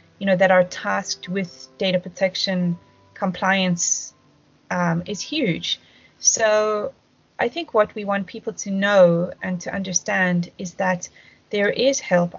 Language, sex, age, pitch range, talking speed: English, female, 30-49, 180-205 Hz, 140 wpm